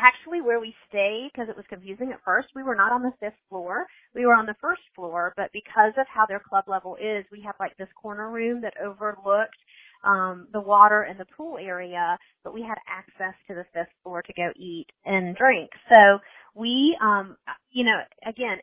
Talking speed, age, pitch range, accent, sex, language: 210 wpm, 30-49, 195-245 Hz, American, female, English